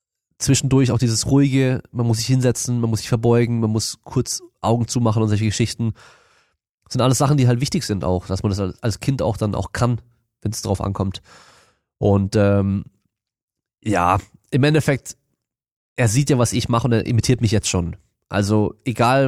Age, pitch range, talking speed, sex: 20-39, 105-130 Hz, 190 wpm, male